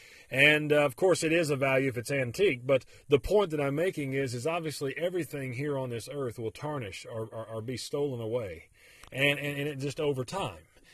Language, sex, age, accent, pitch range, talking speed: English, male, 40-59, American, 130-165 Hz, 220 wpm